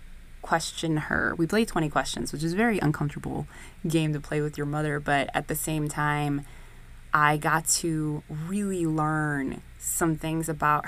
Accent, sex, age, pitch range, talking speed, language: American, female, 20-39, 145-170 Hz, 165 wpm, English